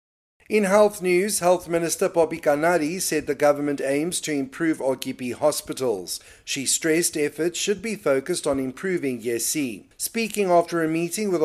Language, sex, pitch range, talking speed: English, male, 135-180 Hz, 150 wpm